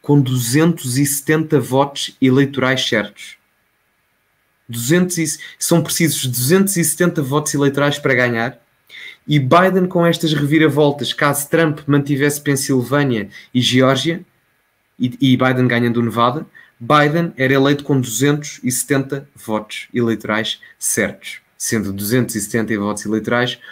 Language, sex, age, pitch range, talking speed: Portuguese, male, 20-39, 115-145 Hz, 110 wpm